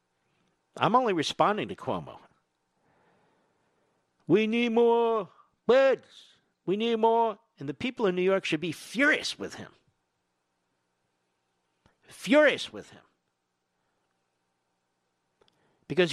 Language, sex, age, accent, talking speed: English, male, 50-69, American, 100 wpm